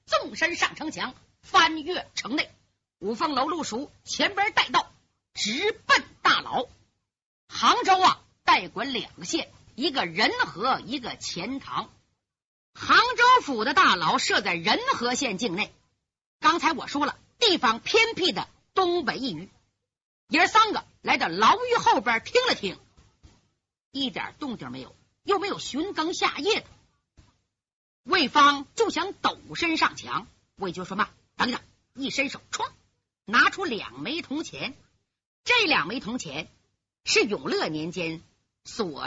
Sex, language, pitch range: female, Chinese, 265-390 Hz